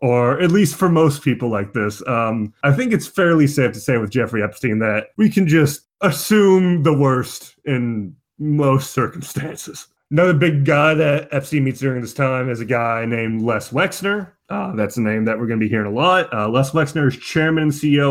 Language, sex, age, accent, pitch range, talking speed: English, male, 30-49, American, 115-155 Hz, 210 wpm